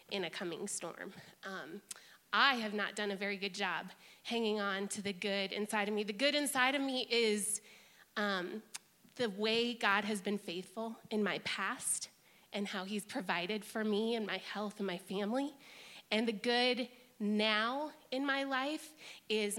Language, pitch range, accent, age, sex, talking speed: English, 210-250 Hz, American, 20-39, female, 175 wpm